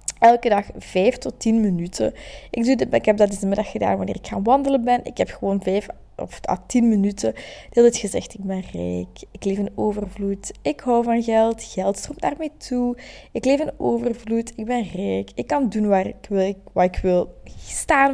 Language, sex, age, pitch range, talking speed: Dutch, female, 20-39, 200-245 Hz, 210 wpm